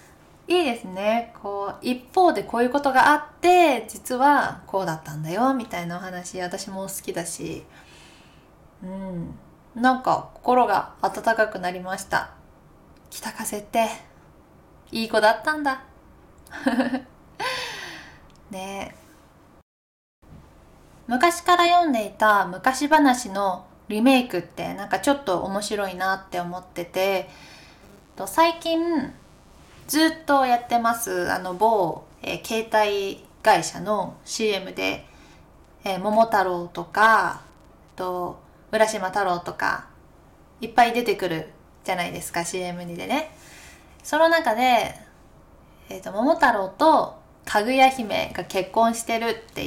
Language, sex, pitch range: Japanese, female, 190-265 Hz